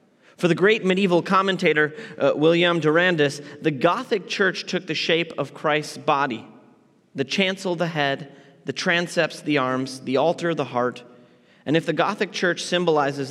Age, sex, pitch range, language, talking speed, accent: 30-49, male, 115-155 Hz, English, 160 wpm, American